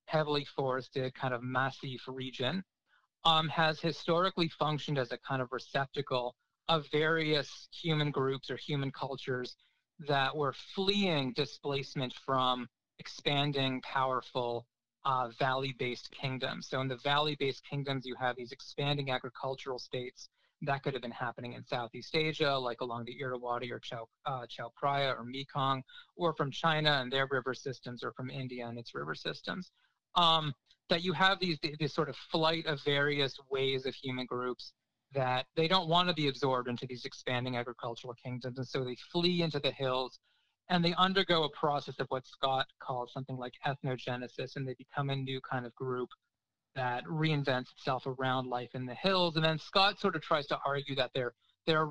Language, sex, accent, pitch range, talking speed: English, male, American, 125-150 Hz, 170 wpm